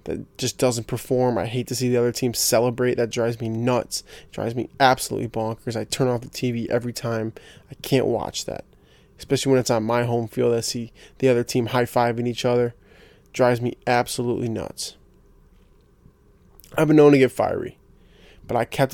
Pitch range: 115-130 Hz